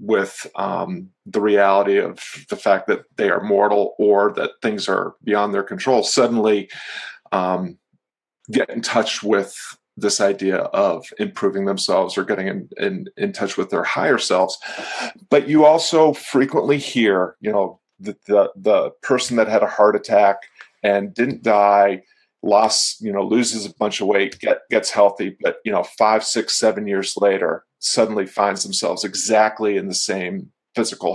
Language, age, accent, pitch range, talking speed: English, 40-59, American, 100-130 Hz, 155 wpm